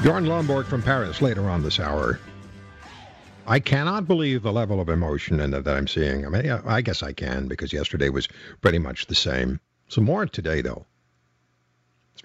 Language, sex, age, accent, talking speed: English, male, 60-79, American, 175 wpm